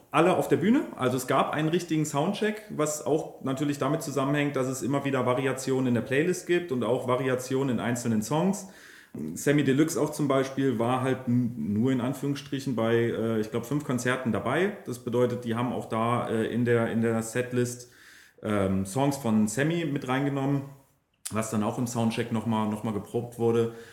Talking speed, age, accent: 175 wpm, 30-49, German